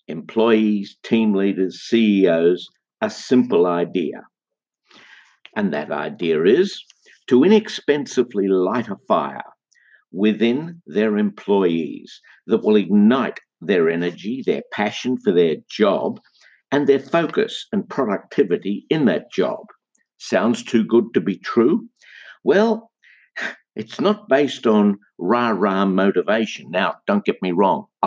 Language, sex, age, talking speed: English, male, 60-79, 120 wpm